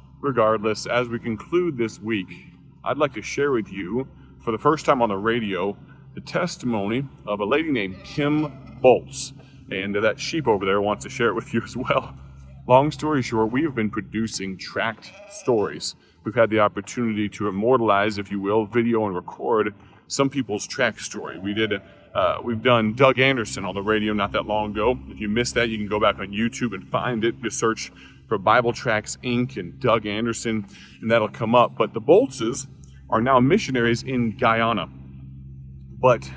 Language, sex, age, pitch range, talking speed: English, male, 30-49, 100-125 Hz, 190 wpm